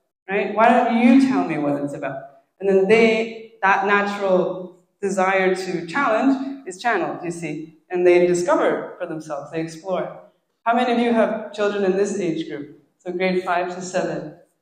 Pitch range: 180-245 Hz